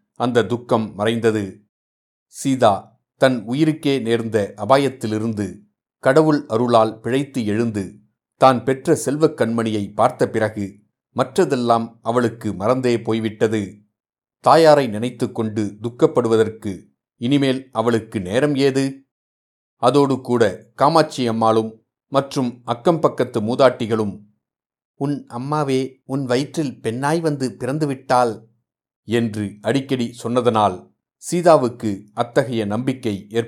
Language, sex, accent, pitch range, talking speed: Tamil, male, native, 110-135 Hz, 85 wpm